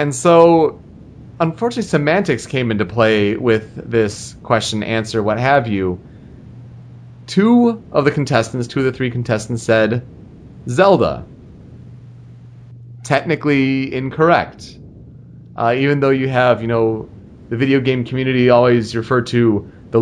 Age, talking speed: 30-49, 125 wpm